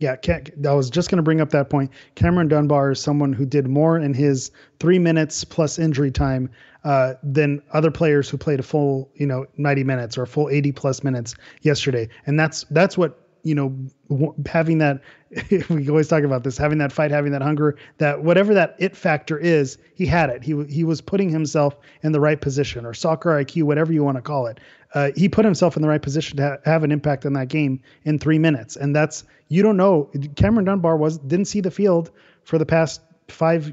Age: 30-49